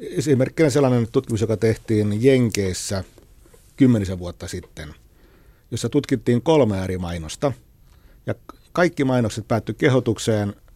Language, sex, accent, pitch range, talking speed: Finnish, male, native, 100-130 Hz, 105 wpm